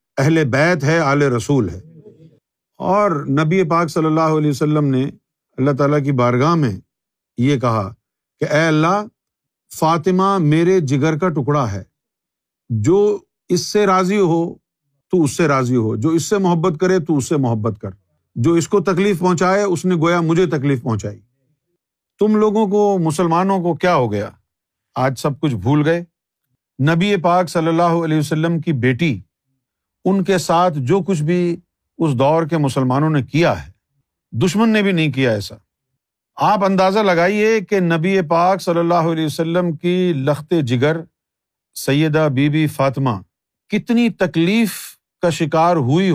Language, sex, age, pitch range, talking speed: Urdu, male, 50-69, 140-180 Hz, 160 wpm